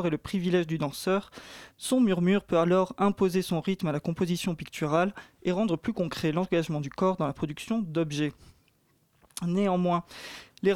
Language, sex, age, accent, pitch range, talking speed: French, male, 20-39, French, 165-195 Hz, 160 wpm